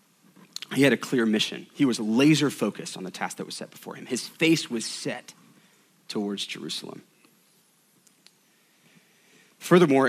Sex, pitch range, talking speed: male, 115-150 Hz, 145 wpm